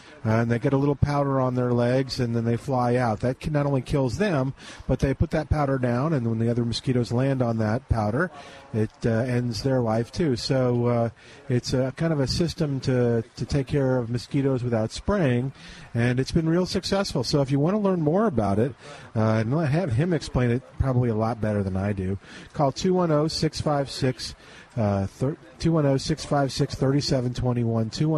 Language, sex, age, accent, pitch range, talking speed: English, male, 40-59, American, 120-150 Hz, 200 wpm